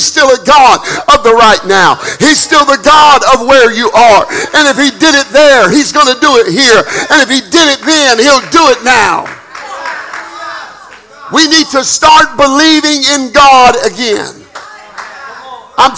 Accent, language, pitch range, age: American, English, 255-315 Hz, 50-69